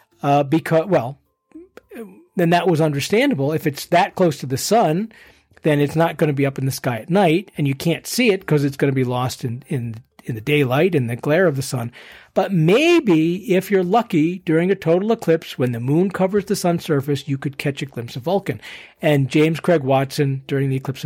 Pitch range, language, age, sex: 135-175 Hz, English, 50-69, male